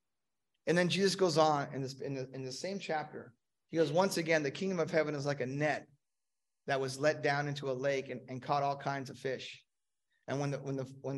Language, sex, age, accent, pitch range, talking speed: English, male, 30-49, American, 135-175 Hz, 240 wpm